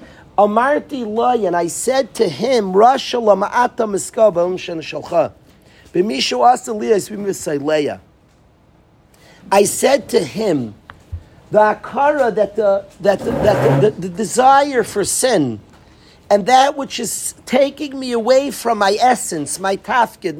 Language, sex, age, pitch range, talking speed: English, male, 50-69, 195-255 Hz, 100 wpm